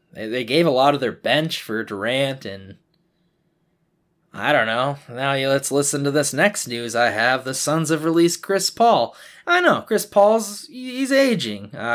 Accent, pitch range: American, 135-185 Hz